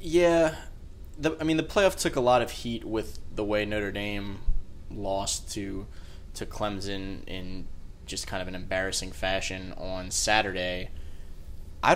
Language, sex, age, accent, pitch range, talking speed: English, male, 20-39, American, 90-105 Hz, 150 wpm